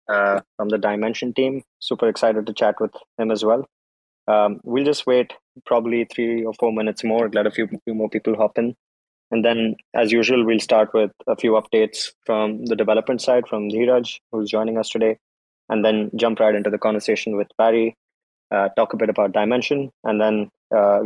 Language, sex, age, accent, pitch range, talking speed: English, male, 20-39, Indian, 105-115 Hz, 200 wpm